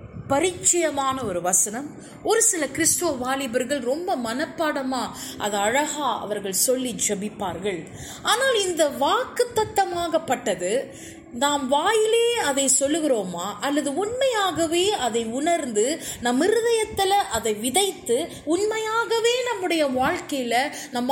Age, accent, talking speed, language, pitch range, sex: 20-39, native, 95 wpm, Tamil, 235-345 Hz, female